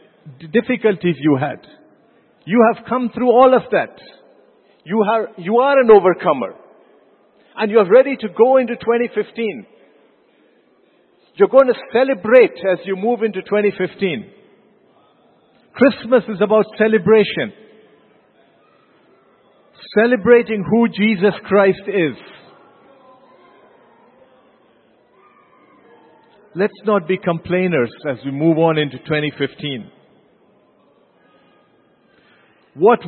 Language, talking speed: English, 95 wpm